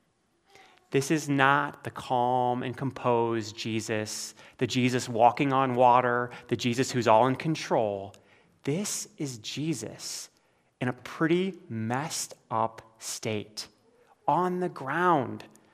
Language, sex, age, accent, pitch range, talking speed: English, male, 30-49, American, 120-160 Hz, 120 wpm